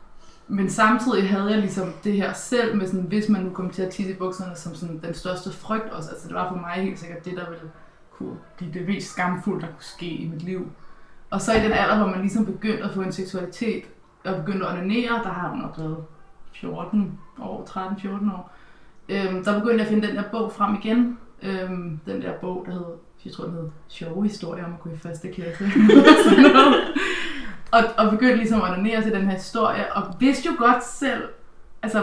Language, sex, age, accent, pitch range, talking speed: Danish, female, 20-39, native, 180-220 Hz, 215 wpm